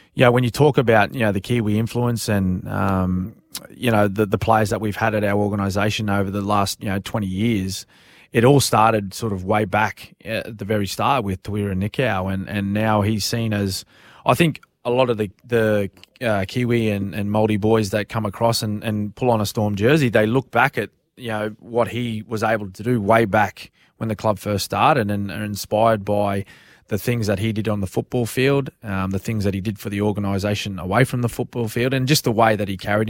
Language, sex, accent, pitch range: English, male, Australian, 100-115 Hz